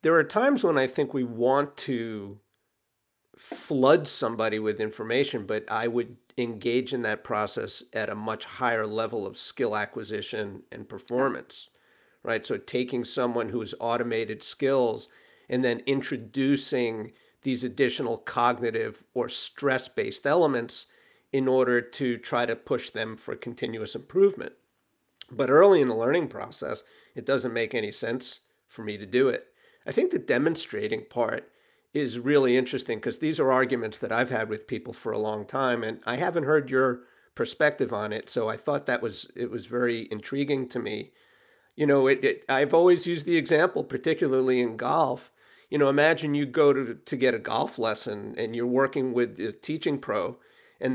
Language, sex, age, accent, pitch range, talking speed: English, male, 40-59, American, 120-155 Hz, 170 wpm